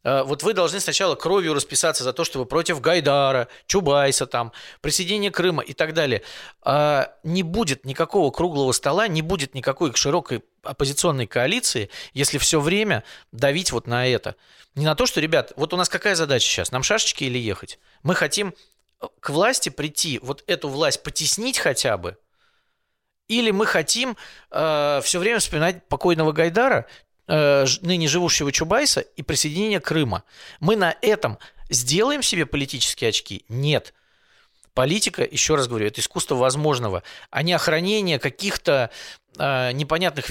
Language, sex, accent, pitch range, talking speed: Russian, male, native, 135-185 Hz, 145 wpm